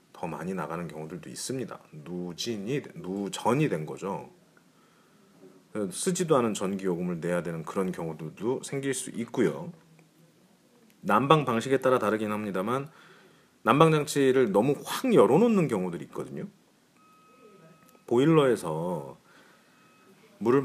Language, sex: Korean, male